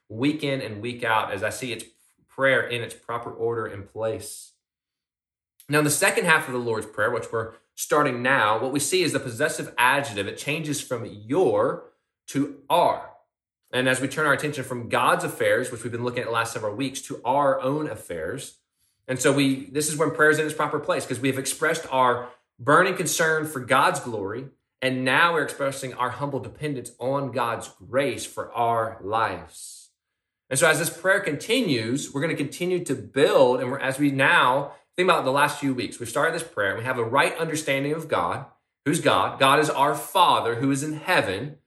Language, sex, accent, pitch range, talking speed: English, male, American, 120-155 Hz, 205 wpm